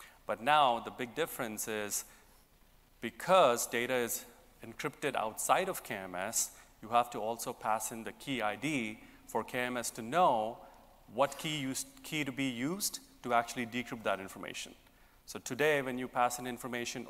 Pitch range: 115-130 Hz